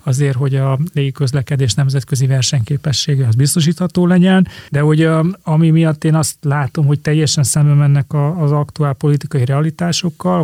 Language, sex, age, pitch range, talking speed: Hungarian, male, 30-49, 140-160 Hz, 145 wpm